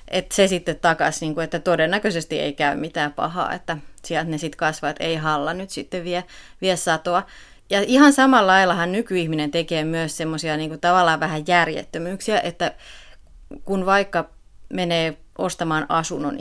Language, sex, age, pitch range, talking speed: Finnish, female, 30-49, 155-185 Hz, 150 wpm